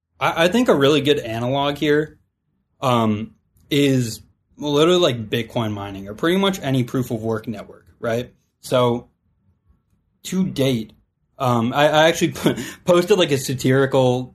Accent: American